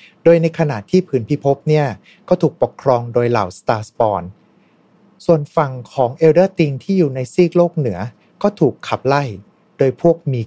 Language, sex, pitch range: Thai, male, 110-160 Hz